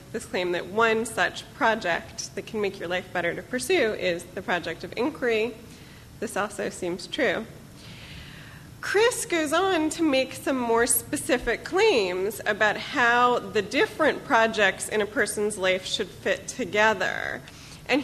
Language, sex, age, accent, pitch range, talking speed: English, female, 30-49, American, 190-240 Hz, 150 wpm